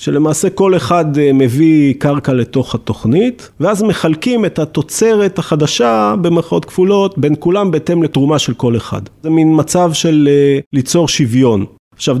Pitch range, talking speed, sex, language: 130-175 Hz, 140 wpm, male, Hebrew